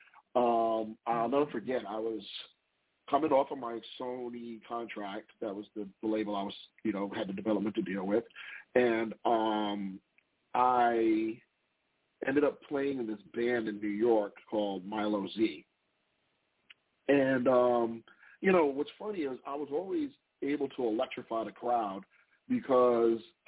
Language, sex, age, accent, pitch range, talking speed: English, male, 40-59, American, 110-135 Hz, 150 wpm